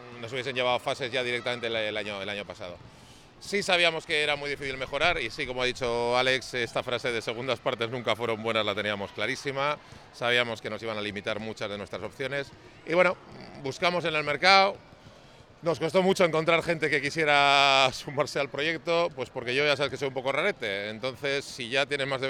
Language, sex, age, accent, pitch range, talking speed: Spanish, male, 40-59, Spanish, 120-145 Hz, 205 wpm